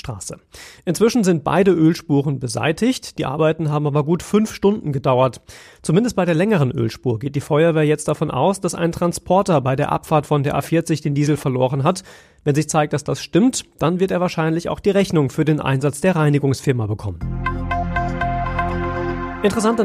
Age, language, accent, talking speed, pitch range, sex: 30-49, German, German, 170 wpm, 140-180 Hz, male